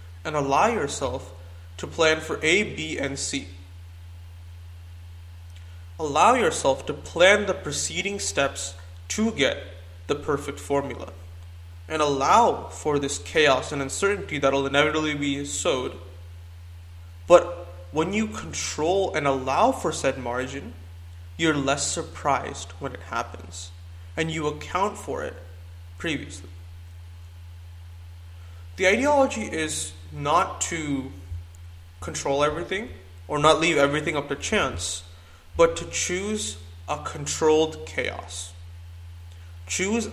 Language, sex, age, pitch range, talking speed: English, male, 20-39, 85-145 Hz, 115 wpm